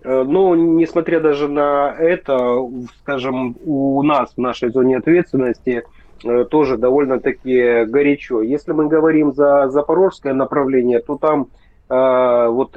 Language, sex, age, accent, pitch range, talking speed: Russian, male, 30-49, native, 125-145 Hz, 125 wpm